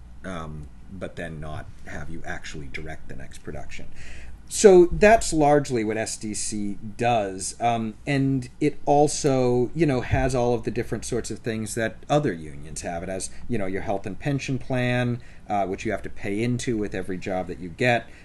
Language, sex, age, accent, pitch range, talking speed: English, male, 40-59, American, 90-120 Hz, 185 wpm